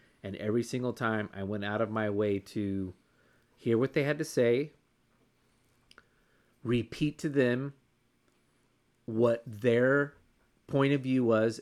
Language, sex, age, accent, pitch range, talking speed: English, male, 30-49, American, 110-130 Hz, 135 wpm